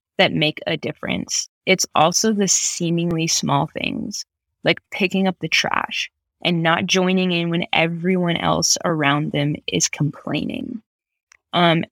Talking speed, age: 135 wpm, 20-39